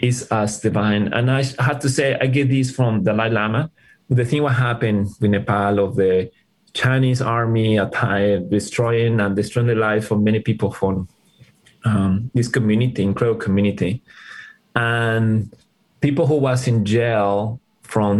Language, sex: English, male